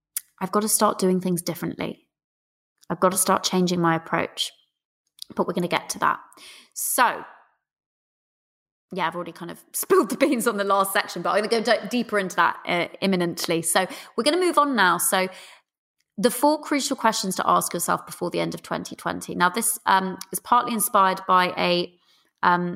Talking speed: 190 wpm